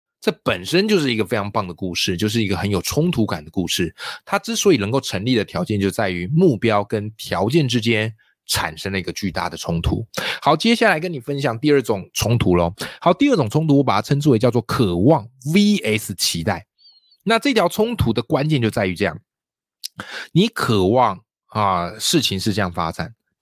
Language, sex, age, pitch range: Chinese, male, 20-39, 95-145 Hz